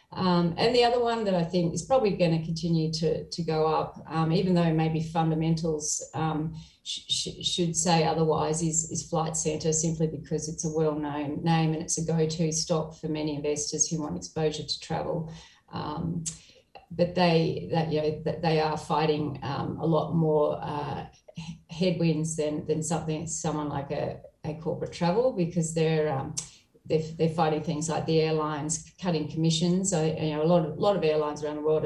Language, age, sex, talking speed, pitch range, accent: English, 30-49, female, 190 wpm, 155-165 Hz, Australian